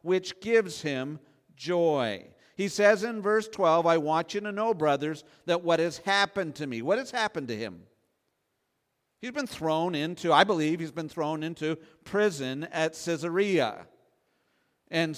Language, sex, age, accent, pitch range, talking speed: English, male, 50-69, American, 160-200 Hz, 160 wpm